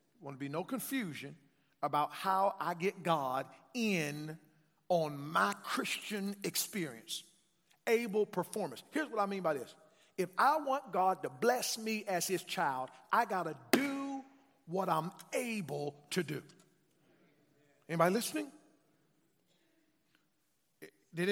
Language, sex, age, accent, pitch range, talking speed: English, male, 50-69, American, 170-250 Hz, 125 wpm